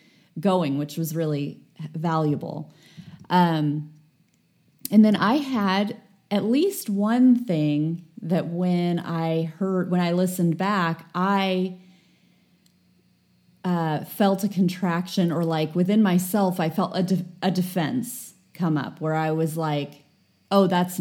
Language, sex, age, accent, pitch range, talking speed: English, female, 30-49, American, 160-200 Hz, 130 wpm